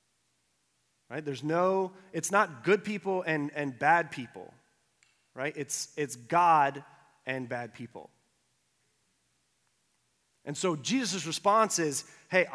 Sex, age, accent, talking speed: male, 30-49, American, 115 wpm